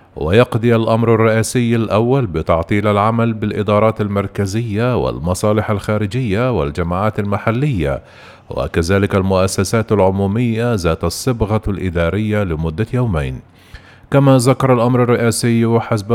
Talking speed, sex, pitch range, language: 95 wpm, male, 95-120 Hz, Arabic